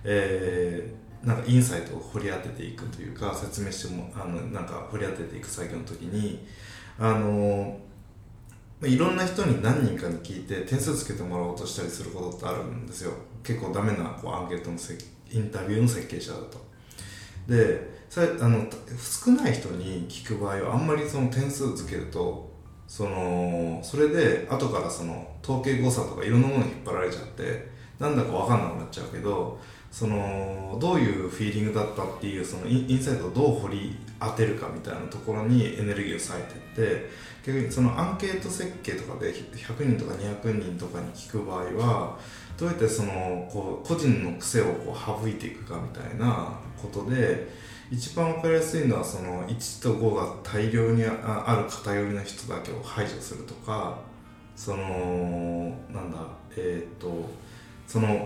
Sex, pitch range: male, 95-120 Hz